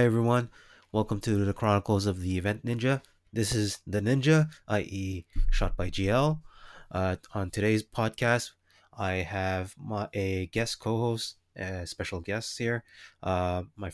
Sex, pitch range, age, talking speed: male, 95-115 Hz, 20-39, 140 wpm